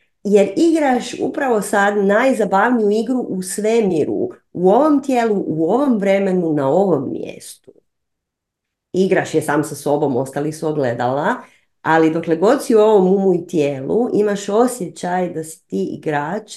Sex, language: female, Croatian